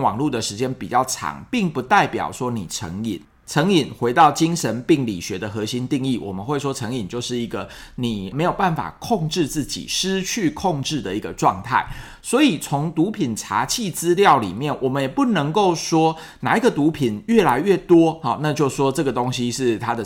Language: Chinese